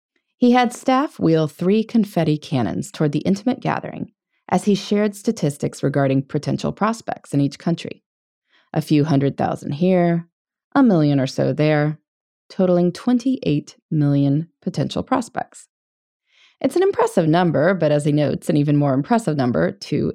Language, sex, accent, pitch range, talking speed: English, female, American, 150-210 Hz, 150 wpm